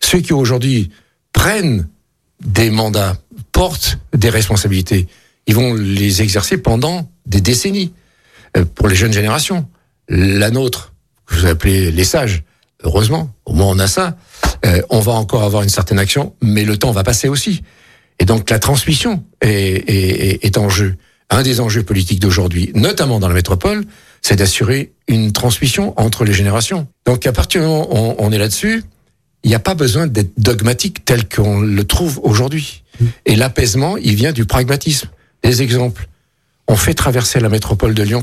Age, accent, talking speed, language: 60-79, French, 175 wpm, French